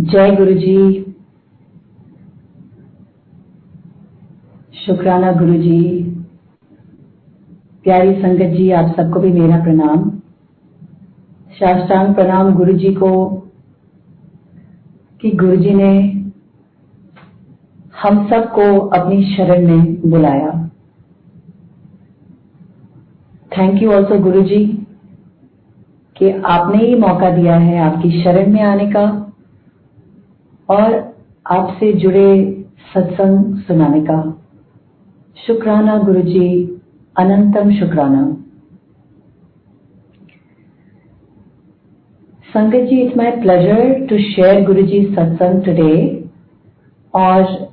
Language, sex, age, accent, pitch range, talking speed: Hindi, female, 40-59, native, 175-200 Hz, 85 wpm